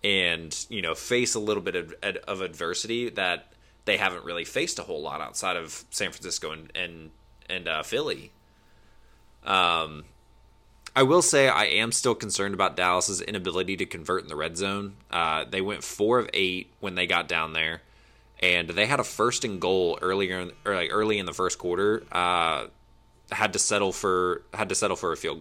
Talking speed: 190 wpm